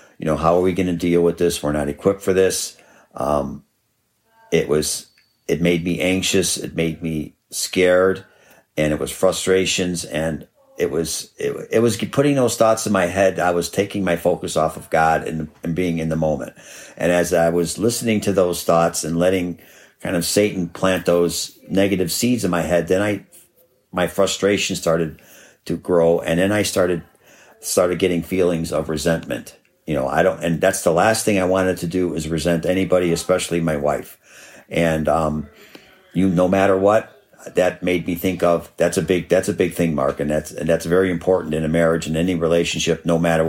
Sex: male